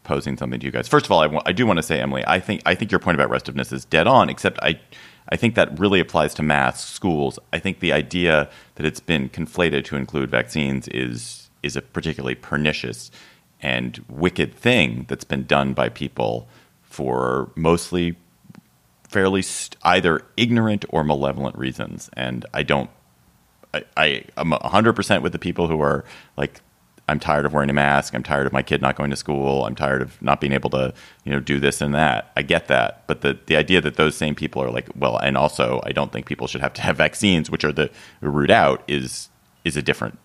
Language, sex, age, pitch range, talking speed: English, male, 30-49, 65-85 Hz, 220 wpm